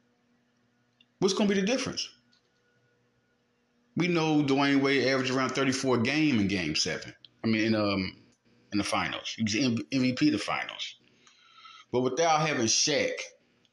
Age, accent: 30-49, American